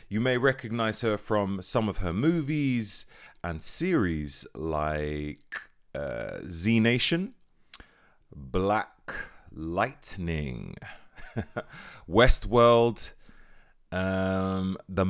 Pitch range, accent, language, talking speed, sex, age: 85-120 Hz, British, English, 80 wpm, male, 30-49